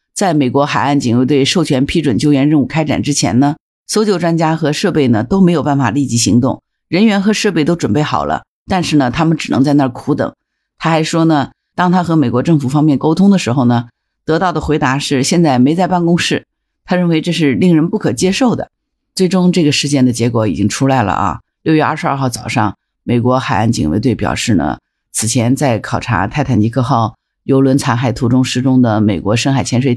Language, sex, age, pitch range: Chinese, female, 50-69, 125-155 Hz